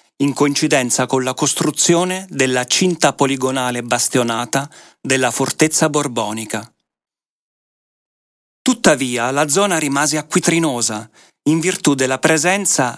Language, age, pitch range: Italian, 40-59, 125-155 Hz